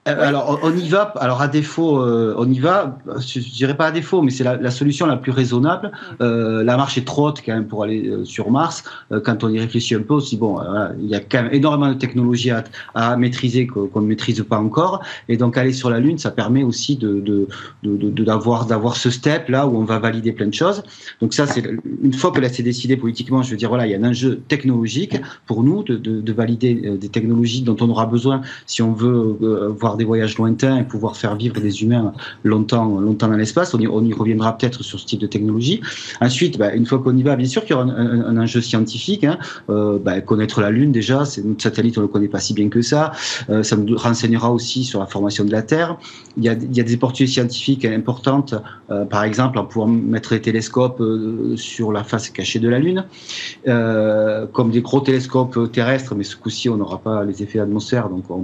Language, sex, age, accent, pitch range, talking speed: French, male, 40-59, French, 110-130 Hz, 250 wpm